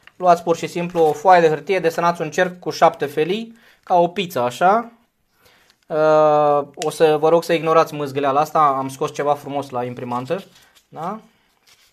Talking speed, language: 170 wpm, Romanian